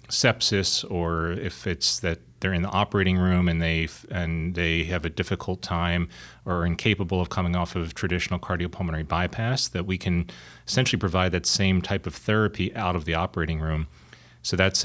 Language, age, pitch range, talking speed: English, 30-49, 85-95 Hz, 180 wpm